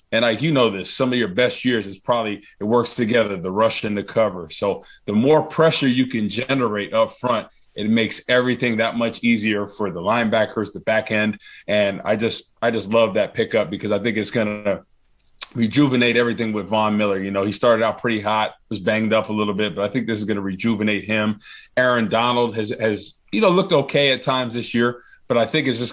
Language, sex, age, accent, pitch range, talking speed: English, male, 30-49, American, 100-115 Hz, 230 wpm